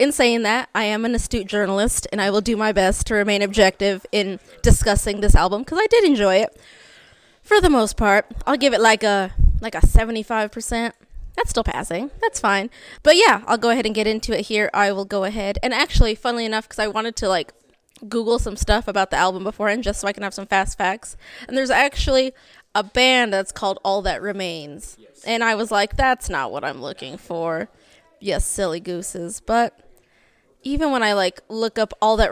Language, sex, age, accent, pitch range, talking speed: English, female, 20-39, American, 200-240 Hz, 210 wpm